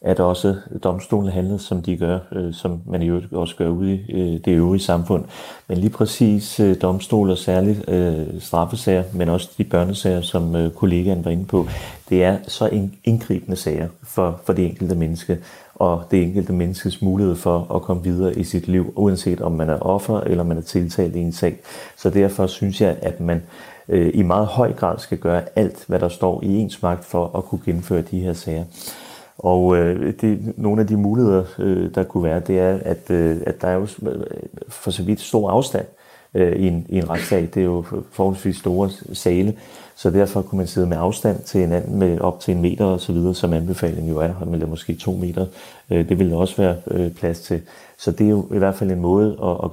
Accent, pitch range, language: native, 85-100 Hz, Danish